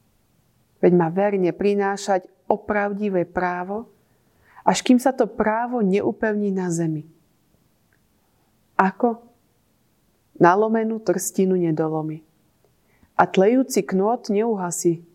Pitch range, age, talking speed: 165-205 Hz, 30-49, 85 wpm